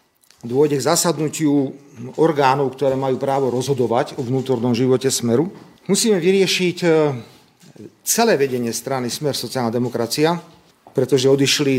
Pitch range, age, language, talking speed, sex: 130-165 Hz, 40-59, Slovak, 110 wpm, male